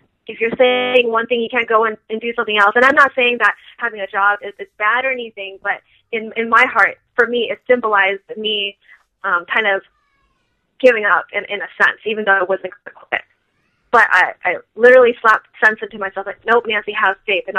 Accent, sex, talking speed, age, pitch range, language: American, female, 225 wpm, 20-39, 195-230 Hz, English